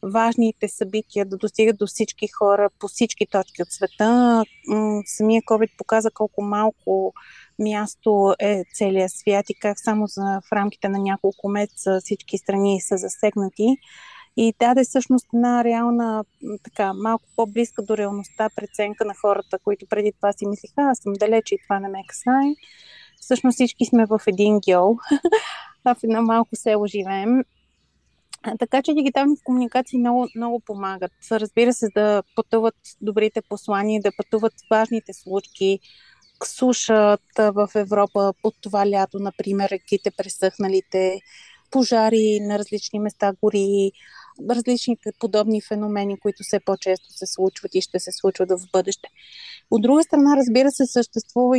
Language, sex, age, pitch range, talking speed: Bulgarian, female, 30-49, 200-235 Hz, 145 wpm